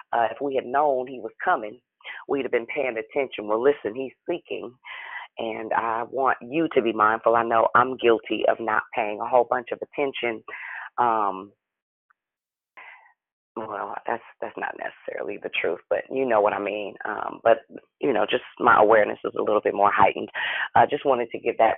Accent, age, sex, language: American, 30-49, female, English